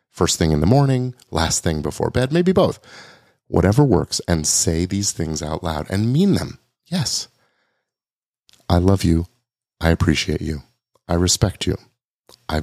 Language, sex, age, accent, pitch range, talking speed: English, male, 40-59, American, 80-120 Hz, 155 wpm